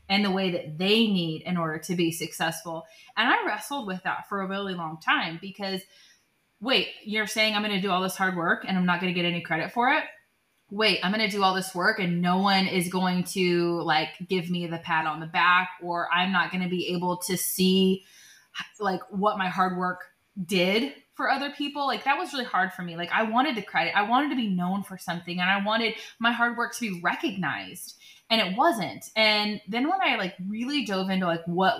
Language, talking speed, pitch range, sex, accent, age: English, 225 wpm, 175-215 Hz, female, American, 20-39